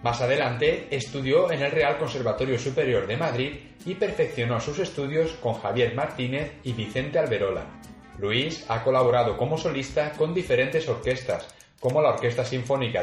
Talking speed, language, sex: 145 wpm, Spanish, male